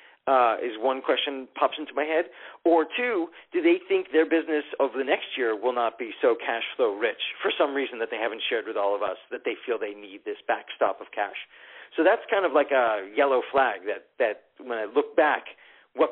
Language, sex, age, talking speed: English, male, 40-59, 235 wpm